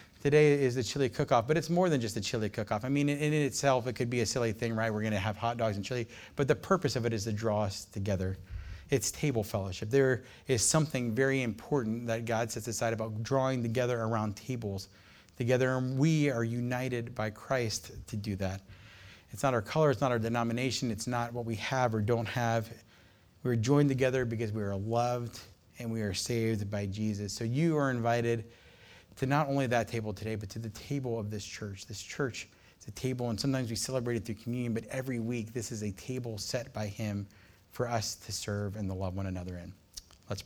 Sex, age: male, 30-49